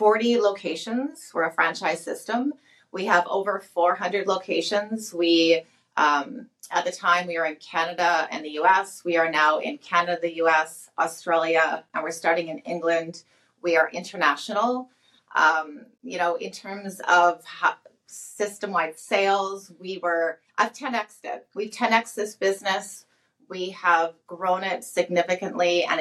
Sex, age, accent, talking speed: female, 30-49, American, 145 wpm